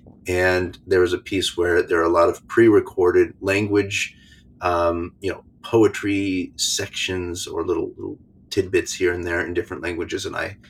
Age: 30-49